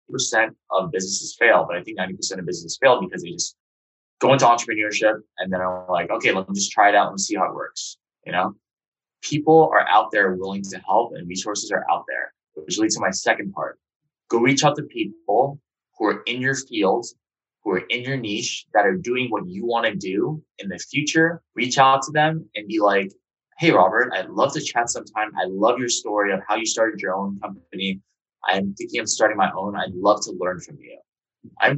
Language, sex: English, male